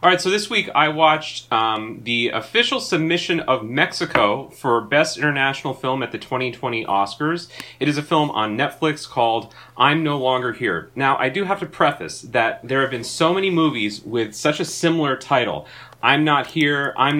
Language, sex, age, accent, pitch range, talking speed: English, male, 30-49, American, 125-160 Hz, 185 wpm